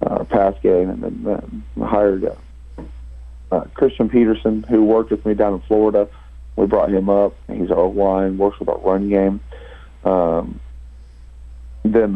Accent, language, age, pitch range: American, English, 40-59, 90-110 Hz